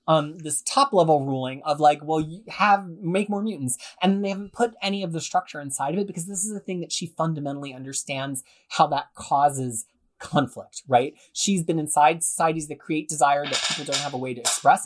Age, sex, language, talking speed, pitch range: 30-49, male, English, 215 wpm, 155-210 Hz